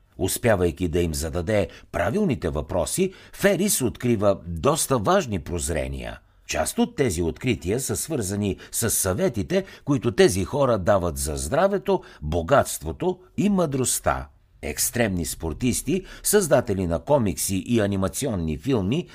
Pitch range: 90-150 Hz